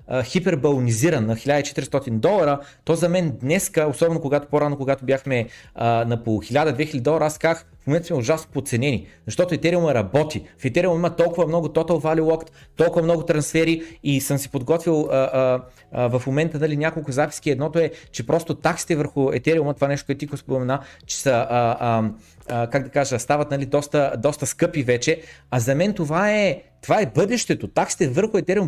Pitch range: 145-190 Hz